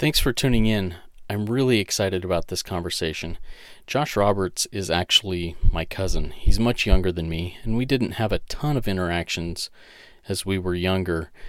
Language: English